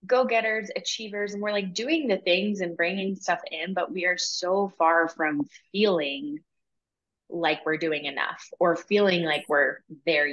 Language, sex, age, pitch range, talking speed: English, female, 20-39, 155-205 Hz, 165 wpm